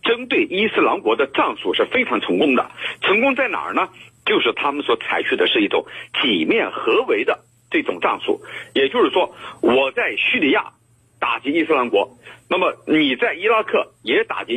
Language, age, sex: Chinese, 50-69, male